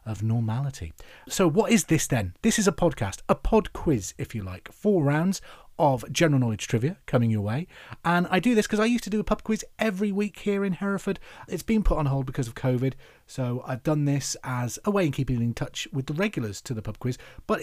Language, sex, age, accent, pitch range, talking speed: English, male, 30-49, British, 140-195 Hz, 240 wpm